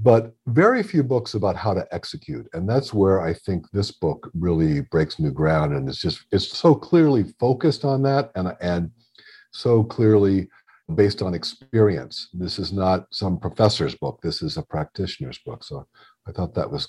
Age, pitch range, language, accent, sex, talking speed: 50-69, 95-135 Hz, English, American, male, 180 wpm